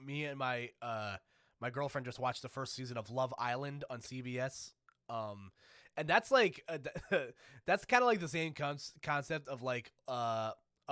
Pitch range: 125-150 Hz